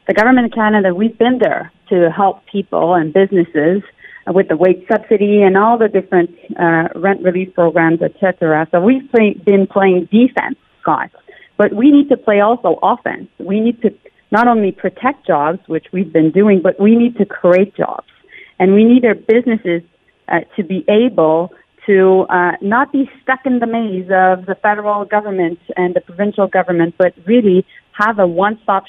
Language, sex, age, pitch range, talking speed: English, female, 40-59, 175-215 Hz, 180 wpm